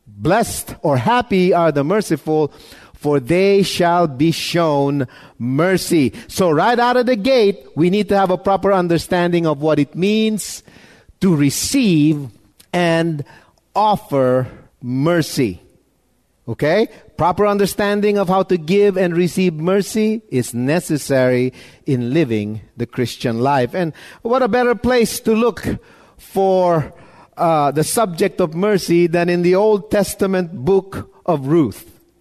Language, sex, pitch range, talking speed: English, male, 150-200 Hz, 135 wpm